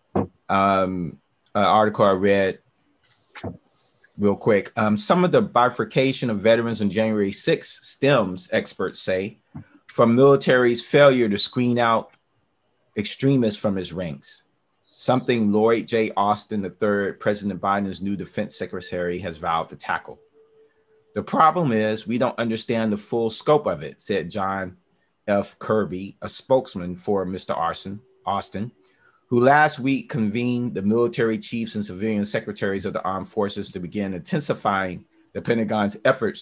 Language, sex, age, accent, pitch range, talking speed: English, male, 30-49, American, 95-120 Hz, 140 wpm